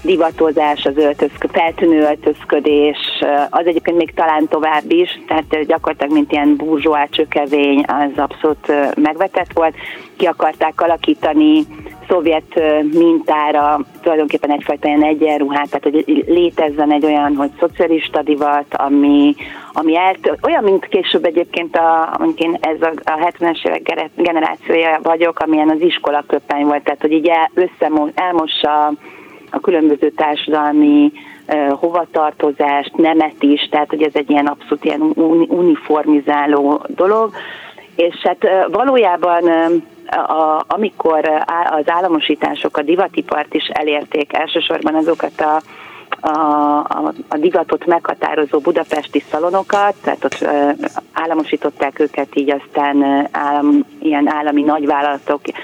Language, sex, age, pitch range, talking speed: Hungarian, female, 30-49, 150-170 Hz, 115 wpm